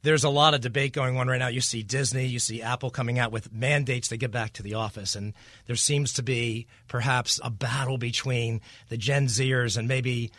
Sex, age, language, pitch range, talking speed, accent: male, 40-59, English, 115-150 Hz, 225 wpm, American